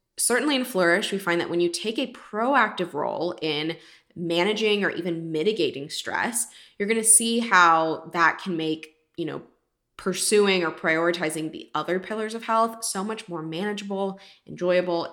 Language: English